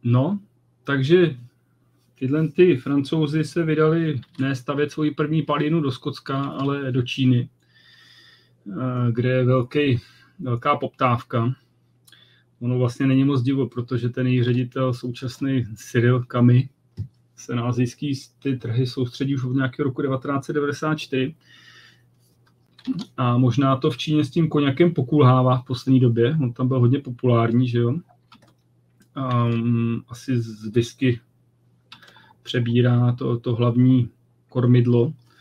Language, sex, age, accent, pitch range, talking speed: Czech, male, 30-49, native, 120-140 Hz, 120 wpm